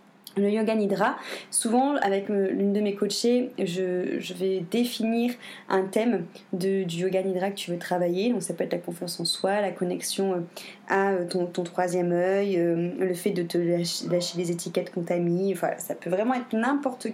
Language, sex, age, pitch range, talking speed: French, female, 20-39, 185-225 Hz, 185 wpm